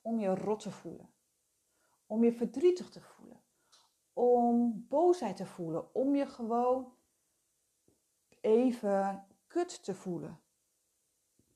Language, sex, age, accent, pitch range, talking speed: Dutch, female, 40-59, Dutch, 195-275 Hz, 110 wpm